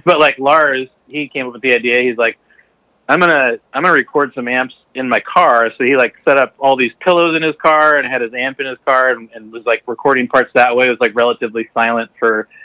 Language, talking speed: English, 260 wpm